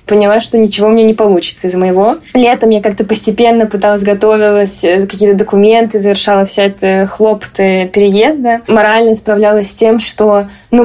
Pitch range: 195-225 Hz